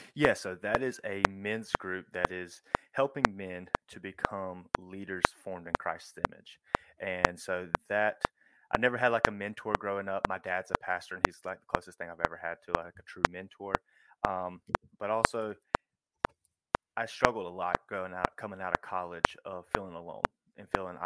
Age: 20-39